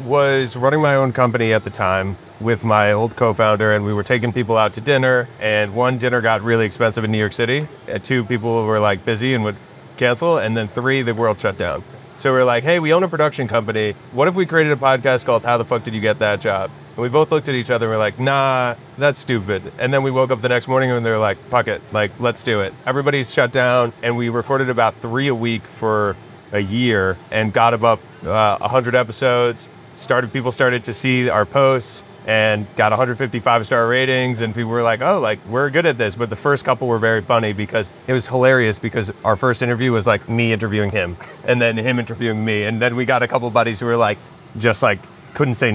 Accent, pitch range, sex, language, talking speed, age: American, 110-130 Hz, male, English, 240 wpm, 30-49